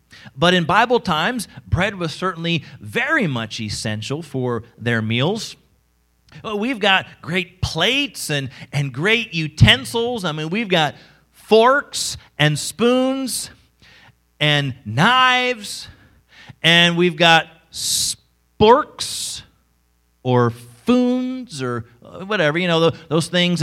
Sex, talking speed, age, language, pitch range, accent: male, 105 wpm, 40-59, English, 135-215 Hz, American